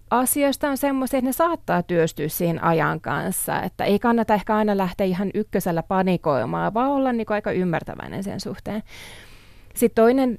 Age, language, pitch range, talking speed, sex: 20-39, Finnish, 175-215 Hz, 160 wpm, female